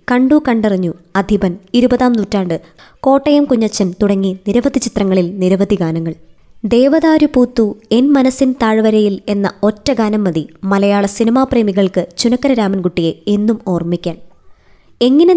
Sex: male